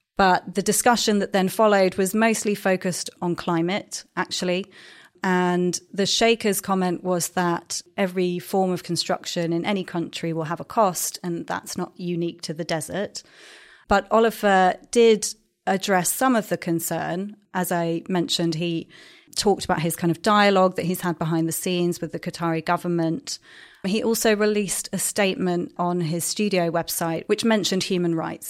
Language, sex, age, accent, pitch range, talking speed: English, female, 30-49, British, 170-195 Hz, 160 wpm